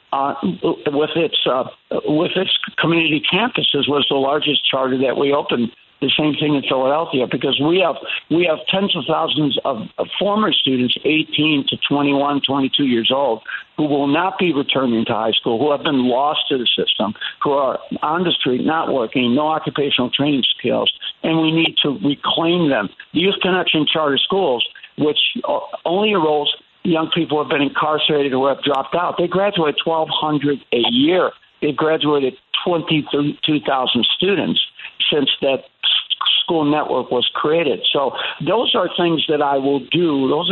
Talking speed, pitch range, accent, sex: 155 wpm, 140-165 Hz, American, male